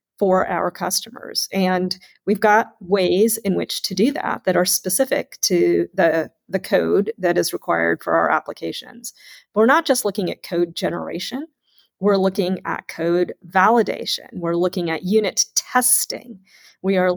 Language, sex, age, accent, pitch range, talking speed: English, female, 40-59, American, 185-230 Hz, 155 wpm